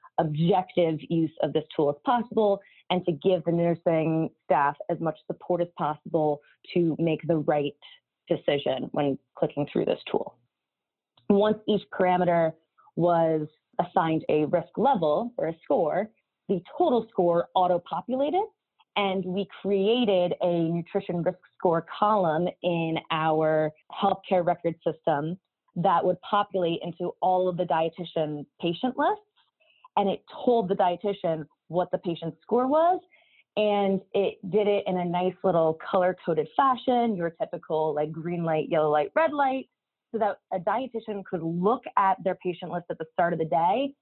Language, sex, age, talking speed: English, female, 20-39, 150 wpm